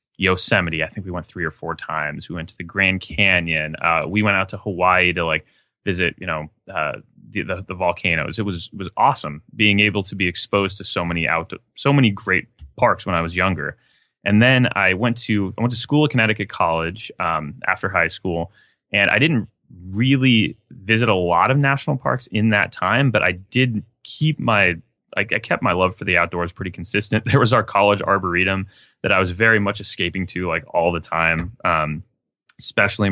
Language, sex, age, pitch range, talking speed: English, male, 20-39, 85-110 Hz, 205 wpm